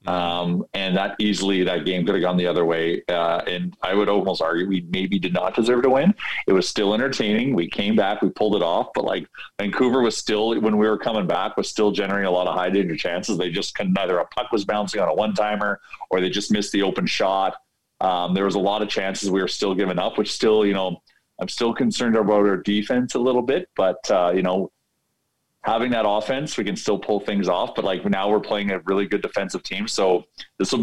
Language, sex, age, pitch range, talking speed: English, male, 40-59, 95-125 Hz, 240 wpm